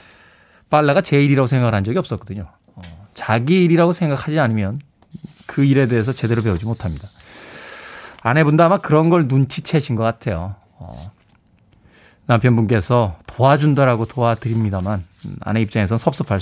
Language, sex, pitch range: Korean, male, 115-180 Hz